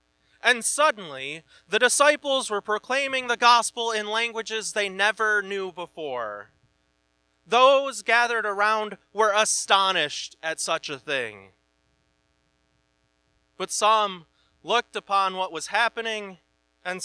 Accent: American